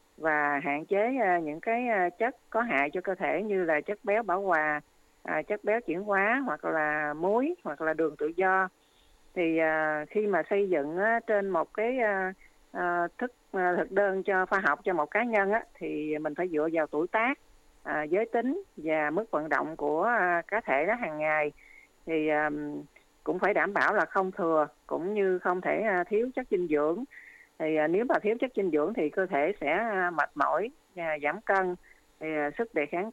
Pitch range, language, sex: 155-215 Hz, Vietnamese, female